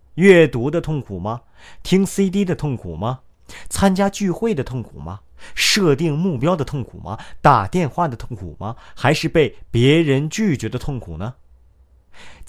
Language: Chinese